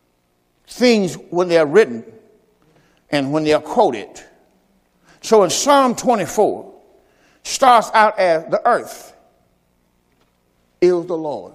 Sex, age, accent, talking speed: male, 60-79, American, 115 wpm